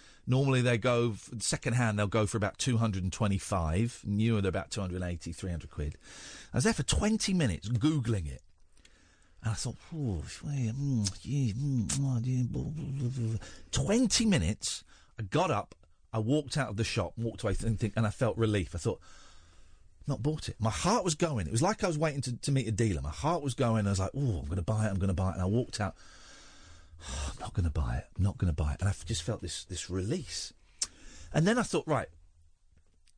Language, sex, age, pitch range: English, male, 40-59, 85-140 Hz